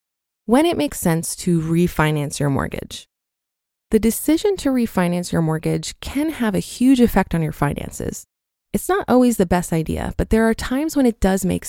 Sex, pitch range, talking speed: female, 170-230 Hz, 185 wpm